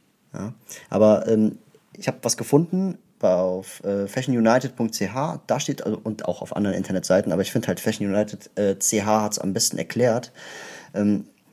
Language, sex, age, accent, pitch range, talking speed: German, male, 30-49, German, 110-140 Hz, 150 wpm